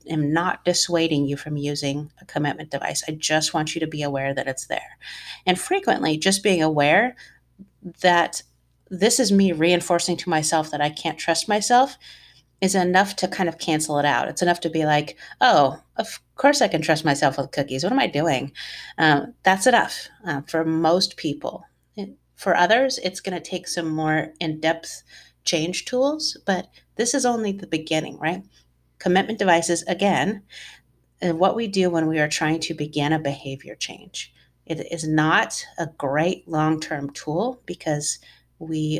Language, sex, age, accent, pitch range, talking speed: English, female, 30-49, American, 150-185 Hz, 175 wpm